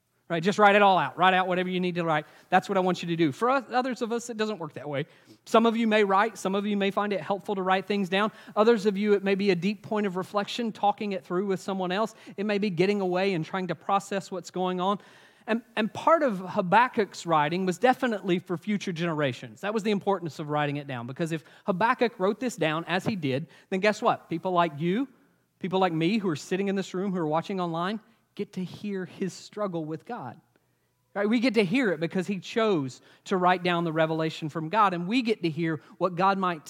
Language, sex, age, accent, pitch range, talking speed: English, male, 30-49, American, 170-215 Hz, 250 wpm